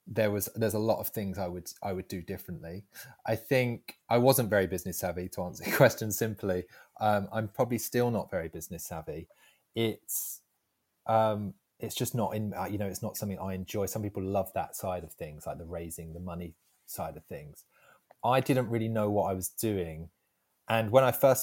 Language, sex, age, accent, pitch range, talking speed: English, male, 20-39, British, 95-110 Hz, 205 wpm